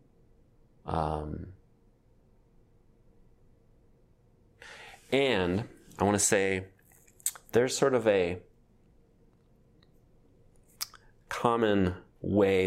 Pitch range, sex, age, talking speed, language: 85-105 Hz, male, 30-49, 55 wpm, English